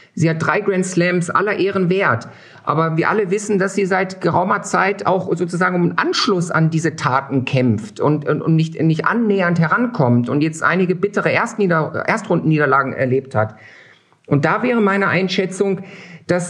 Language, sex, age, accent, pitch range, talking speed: German, male, 50-69, German, 155-205 Hz, 170 wpm